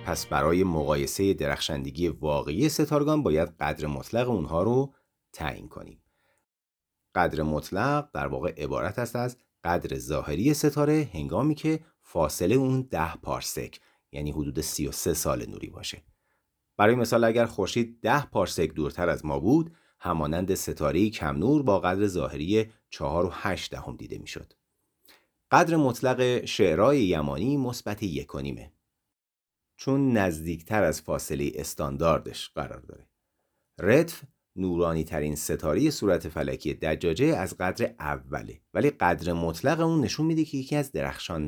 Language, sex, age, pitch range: Persian, male, 40-59, 80-130 Hz